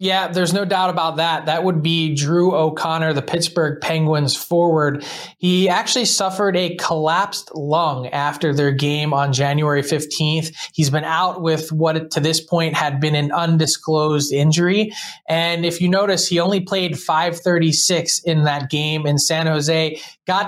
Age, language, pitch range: 20-39, English, 160-185 Hz